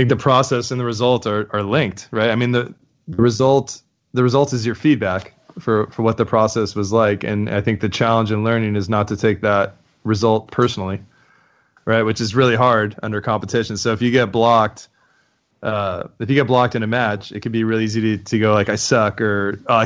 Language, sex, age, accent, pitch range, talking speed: English, male, 20-39, American, 105-115 Hz, 225 wpm